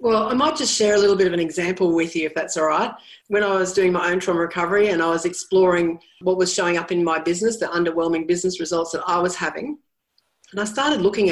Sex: female